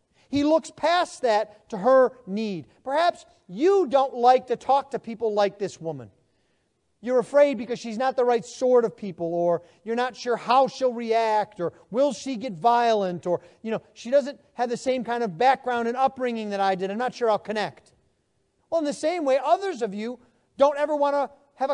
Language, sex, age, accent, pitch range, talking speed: English, male, 40-59, American, 210-280 Hz, 205 wpm